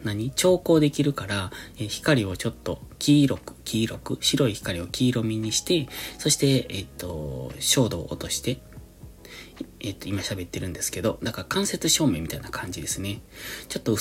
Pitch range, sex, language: 95-130 Hz, male, Japanese